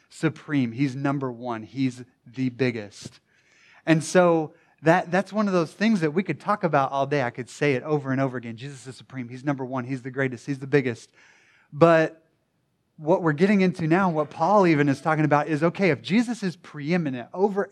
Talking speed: 205 wpm